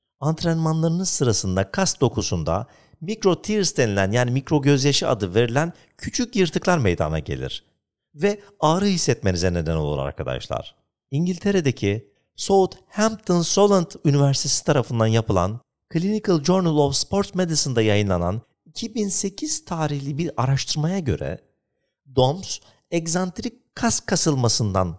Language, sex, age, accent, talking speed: Turkish, male, 50-69, native, 100 wpm